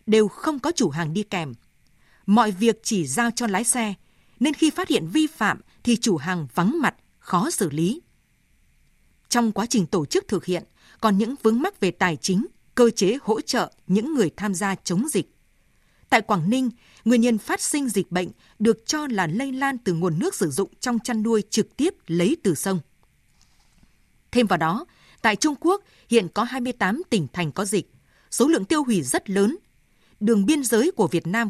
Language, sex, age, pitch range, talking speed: Vietnamese, female, 20-39, 185-245 Hz, 200 wpm